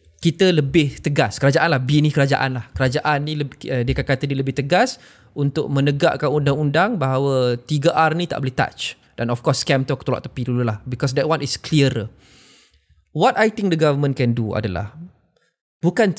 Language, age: Malay, 20-39